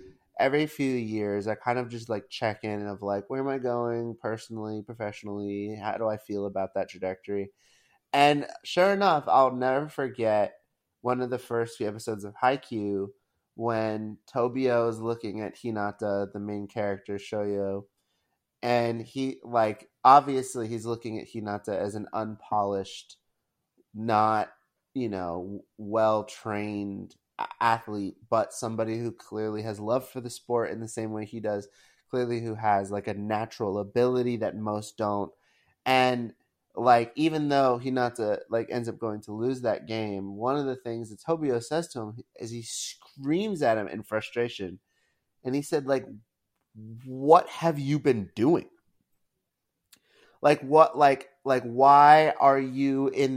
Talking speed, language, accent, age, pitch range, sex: 155 wpm, English, American, 30-49, 105-130 Hz, male